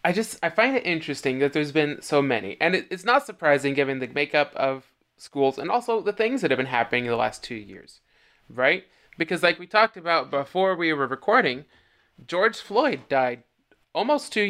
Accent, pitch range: American, 140-195 Hz